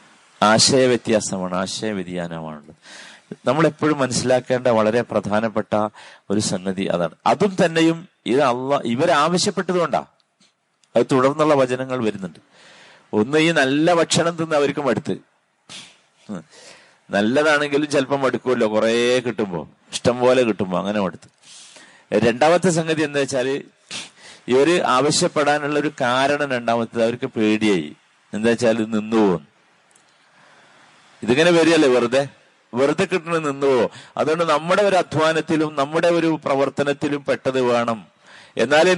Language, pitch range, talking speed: Malayalam, 110-155 Hz, 100 wpm